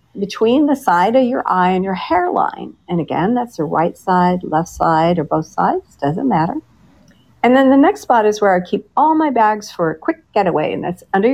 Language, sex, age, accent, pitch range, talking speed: English, female, 50-69, American, 185-260 Hz, 215 wpm